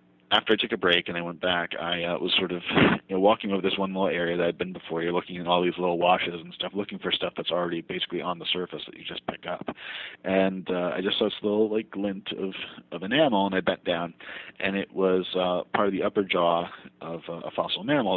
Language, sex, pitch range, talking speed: English, male, 85-95 Hz, 260 wpm